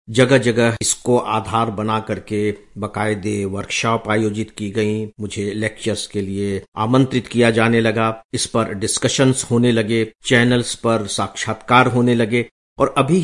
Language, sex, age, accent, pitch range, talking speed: English, male, 50-69, Indian, 105-130 Hz, 135 wpm